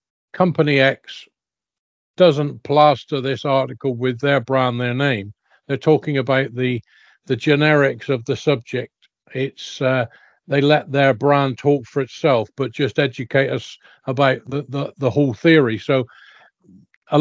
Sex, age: male, 50-69